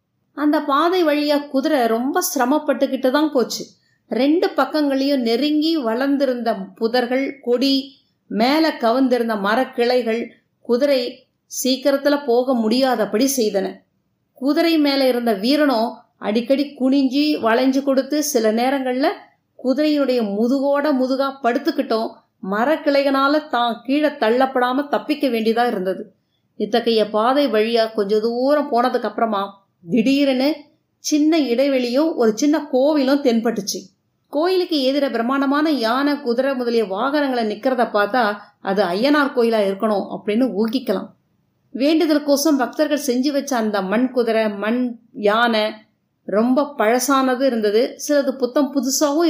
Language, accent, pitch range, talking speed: Tamil, native, 225-280 Hz, 105 wpm